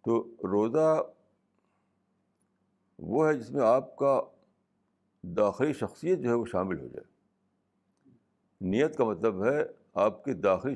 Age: 60-79